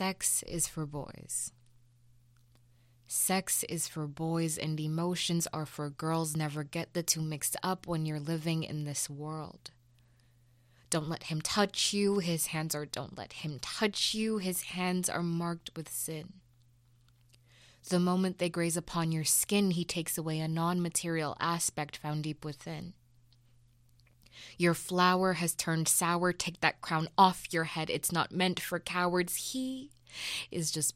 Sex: female